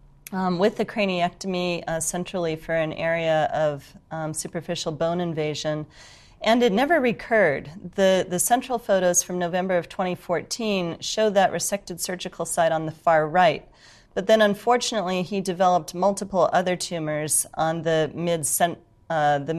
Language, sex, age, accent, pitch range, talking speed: English, female, 40-59, American, 155-180 Hz, 145 wpm